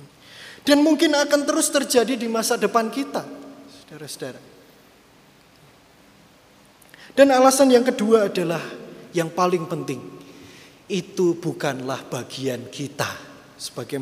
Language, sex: Indonesian, male